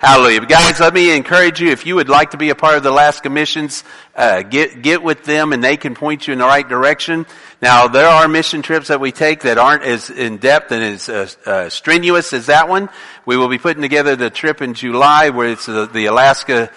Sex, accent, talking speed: male, American, 240 wpm